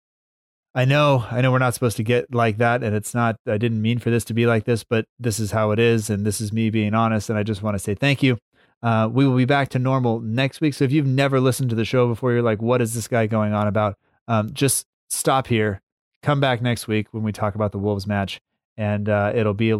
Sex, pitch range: male, 110-130 Hz